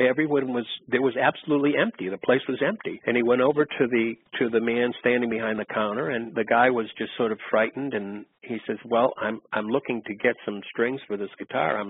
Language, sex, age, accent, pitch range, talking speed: English, male, 50-69, American, 110-130 Hz, 230 wpm